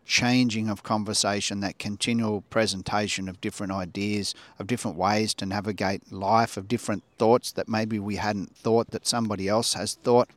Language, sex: English, male